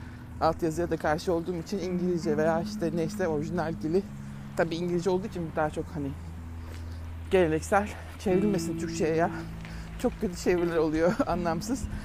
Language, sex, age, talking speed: Turkish, male, 60-79, 135 wpm